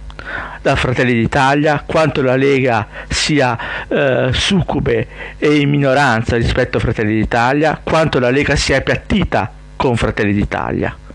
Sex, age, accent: male, 50-69, native